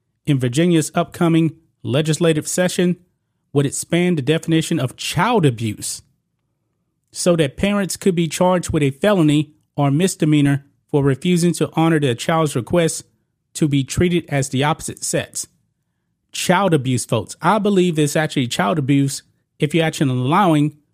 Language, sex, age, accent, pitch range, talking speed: English, male, 30-49, American, 140-170 Hz, 145 wpm